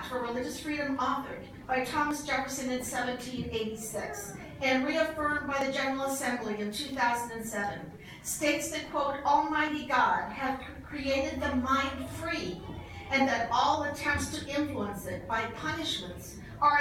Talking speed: 130 wpm